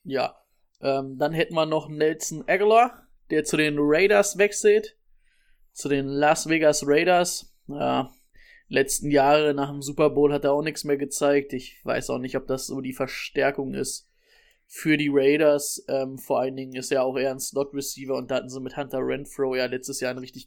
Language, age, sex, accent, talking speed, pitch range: German, 20-39, male, German, 195 wpm, 135-165 Hz